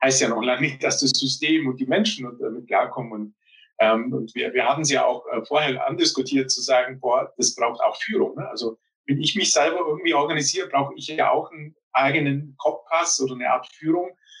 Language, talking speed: German, 210 wpm